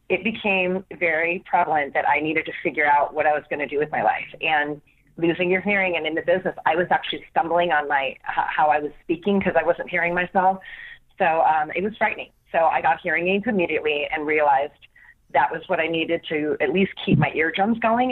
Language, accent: English, American